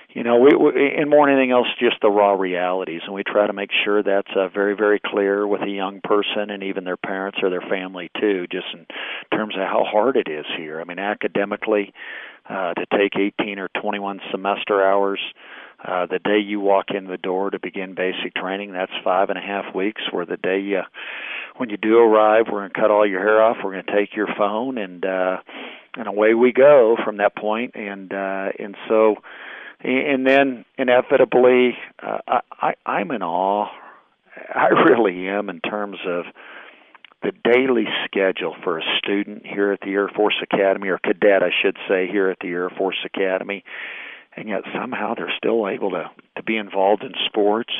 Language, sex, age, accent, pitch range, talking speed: English, male, 50-69, American, 95-105 Hz, 190 wpm